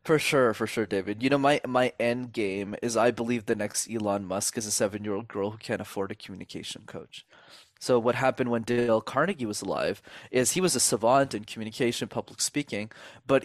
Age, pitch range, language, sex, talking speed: 20-39, 110-130 Hz, English, male, 205 wpm